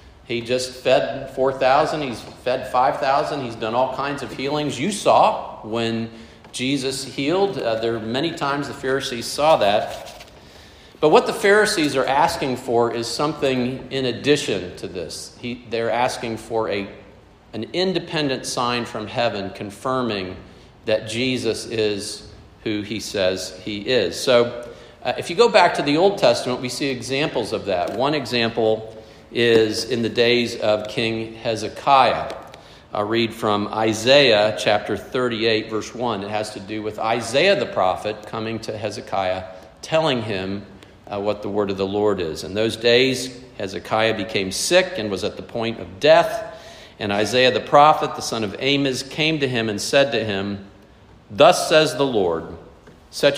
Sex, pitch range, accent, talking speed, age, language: male, 105-135 Hz, American, 165 wpm, 50-69, English